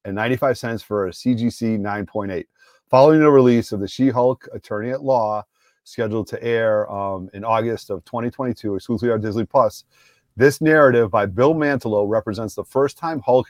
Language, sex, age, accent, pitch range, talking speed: English, male, 40-59, American, 105-130 Hz, 170 wpm